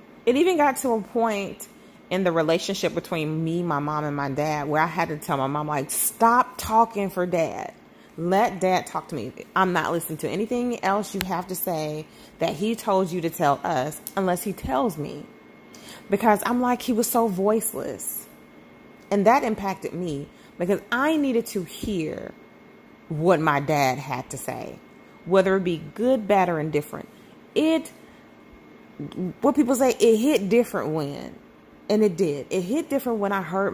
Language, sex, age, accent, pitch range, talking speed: English, female, 30-49, American, 165-230 Hz, 180 wpm